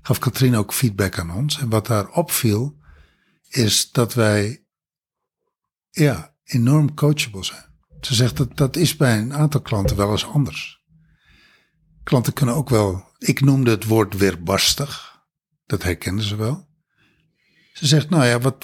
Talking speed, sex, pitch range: 150 wpm, male, 110-150 Hz